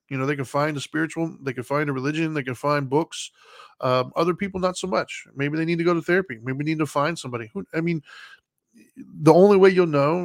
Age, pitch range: 20-39, 135-160 Hz